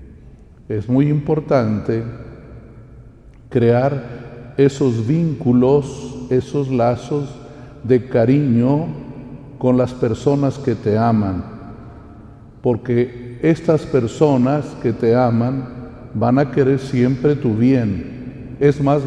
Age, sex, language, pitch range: 50-69, male, Spanish, 120-145 Hz